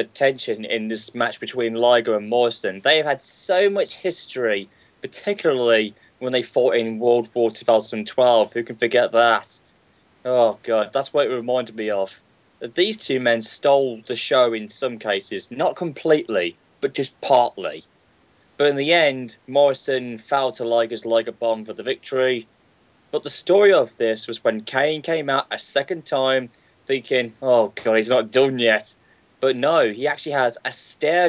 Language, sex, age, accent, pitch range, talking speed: English, male, 10-29, British, 115-135 Hz, 170 wpm